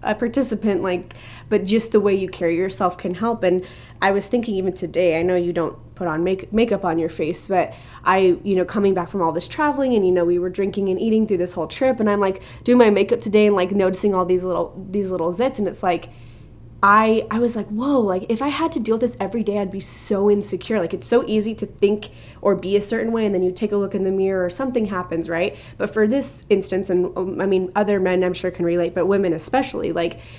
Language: English